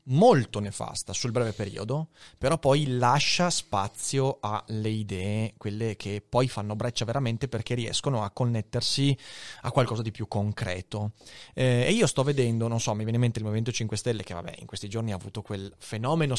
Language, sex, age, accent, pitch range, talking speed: Italian, male, 30-49, native, 115-160 Hz, 185 wpm